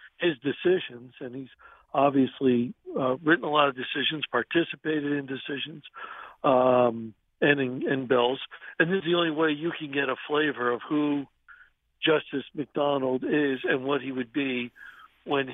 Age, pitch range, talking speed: 60-79, 130-160 Hz, 160 wpm